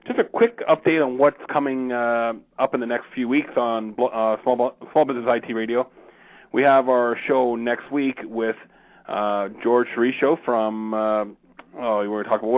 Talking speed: 155 wpm